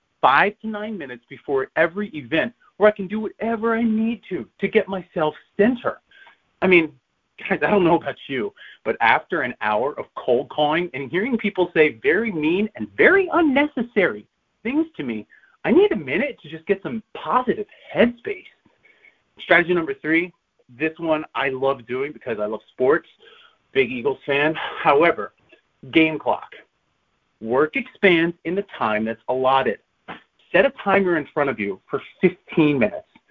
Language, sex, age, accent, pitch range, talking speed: English, male, 30-49, American, 150-220 Hz, 165 wpm